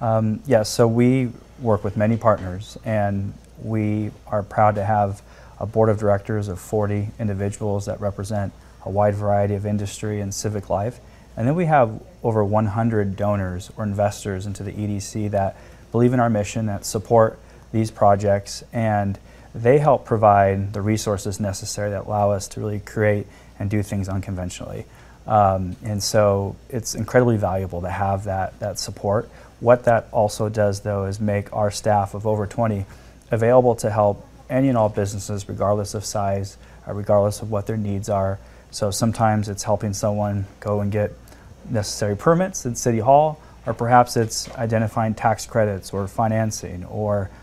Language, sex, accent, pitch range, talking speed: English, male, American, 100-115 Hz, 165 wpm